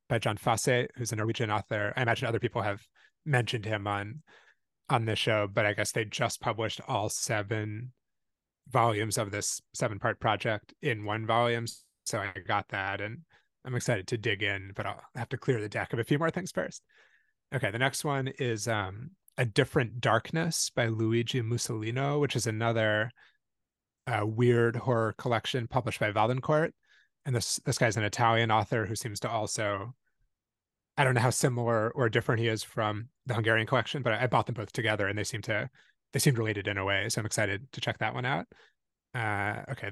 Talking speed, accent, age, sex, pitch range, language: 195 wpm, American, 20-39, male, 105-125 Hz, English